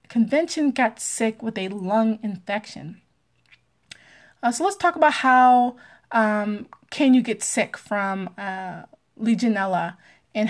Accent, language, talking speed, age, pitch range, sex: American, English, 125 wpm, 20-39, 195-235 Hz, female